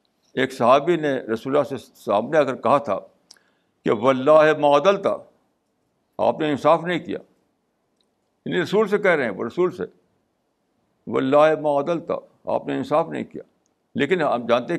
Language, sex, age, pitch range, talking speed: Urdu, male, 60-79, 145-185 Hz, 150 wpm